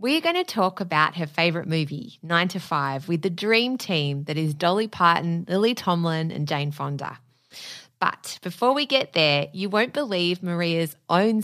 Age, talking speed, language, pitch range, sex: 20-39, 180 wpm, English, 155-210 Hz, female